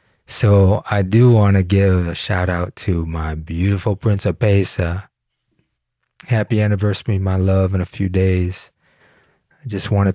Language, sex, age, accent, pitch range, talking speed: English, male, 30-49, American, 90-105 Hz, 155 wpm